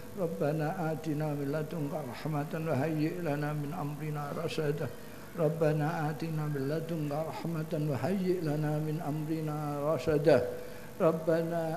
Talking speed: 95 wpm